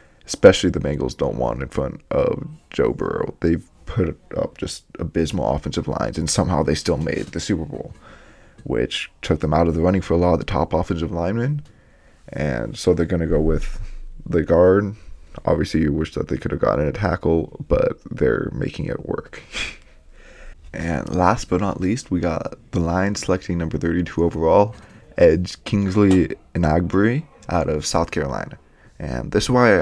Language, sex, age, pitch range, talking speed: English, male, 20-39, 80-95 Hz, 180 wpm